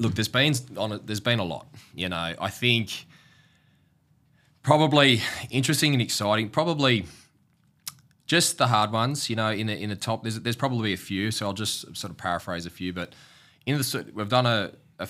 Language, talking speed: English, 185 wpm